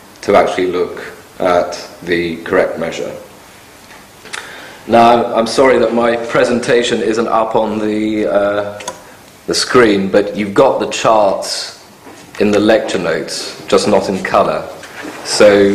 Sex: male